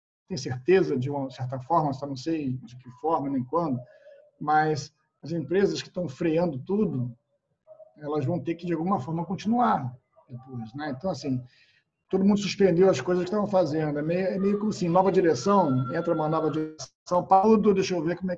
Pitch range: 145-185 Hz